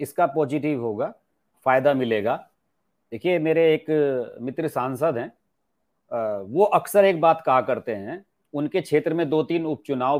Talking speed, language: 140 wpm, English